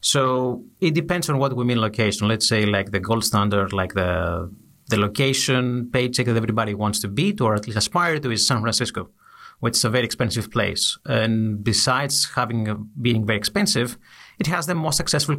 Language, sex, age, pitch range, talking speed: Greek, male, 30-49, 110-135 Hz, 195 wpm